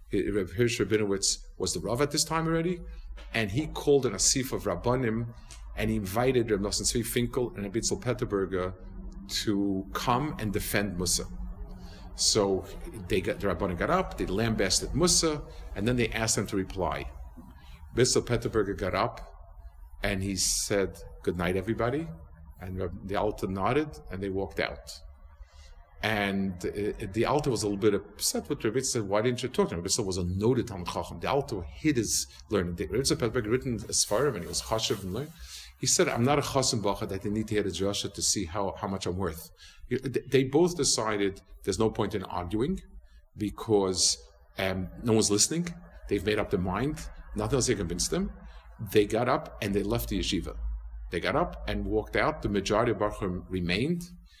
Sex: male